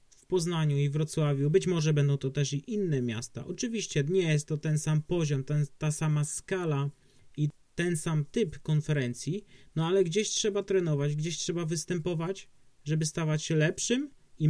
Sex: male